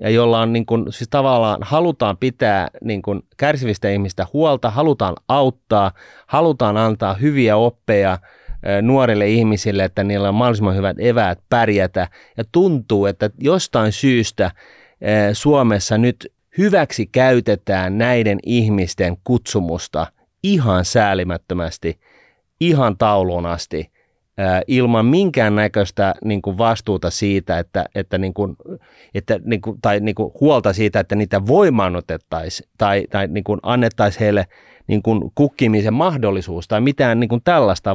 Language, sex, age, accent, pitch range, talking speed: Finnish, male, 30-49, native, 100-125 Hz, 125 wpm